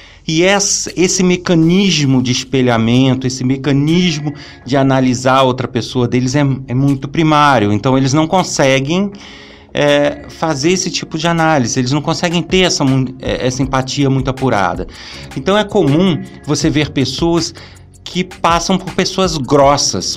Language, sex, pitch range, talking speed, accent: Portuguese, male, 120-160 Hz, 135 wpm, Brazilian